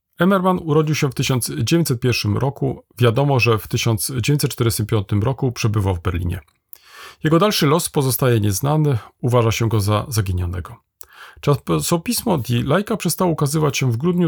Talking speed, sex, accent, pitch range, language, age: 135 wpm, male, native, 105-140 Hz, Polish, 40-59